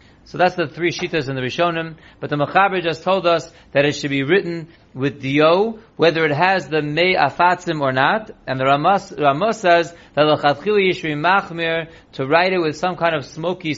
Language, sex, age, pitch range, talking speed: English, male, 40-59, 145-180 Hz, 185 wpm